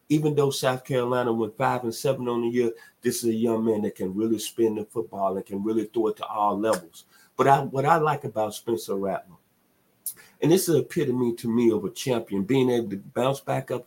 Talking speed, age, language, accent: 235 wpm, 50-69, English, American